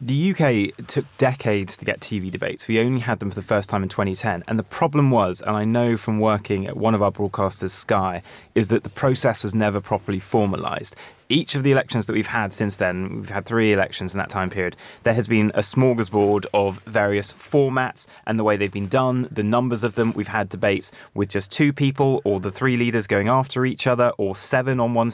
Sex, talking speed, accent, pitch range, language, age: male, 225 wpm, British, 105-130 Hz, English, 30-49